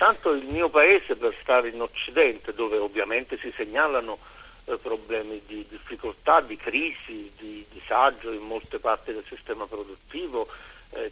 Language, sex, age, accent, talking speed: Italian, male, 50-69, native, 145 wpm